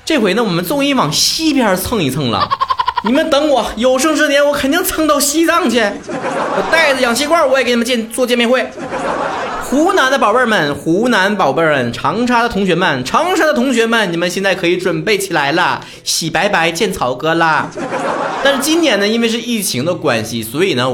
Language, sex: Chinese, male